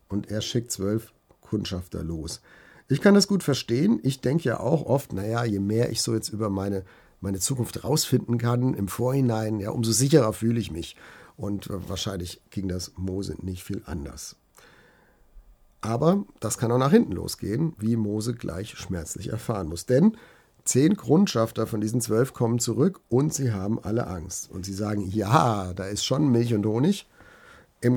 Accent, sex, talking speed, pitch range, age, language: German, male, 170 wpm, 100-130 Hz, 50-69, German